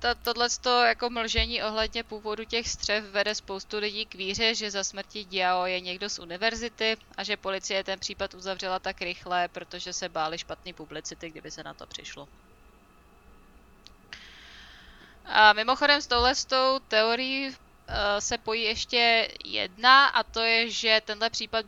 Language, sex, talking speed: Czech, female, 150 wpm